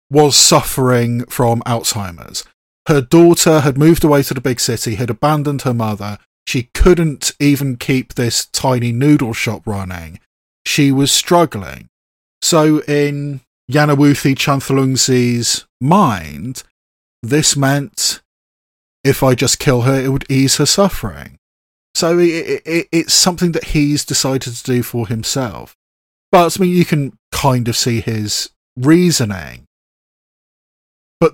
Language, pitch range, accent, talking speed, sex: English, 115-150 Hz, British, 130 wpm, male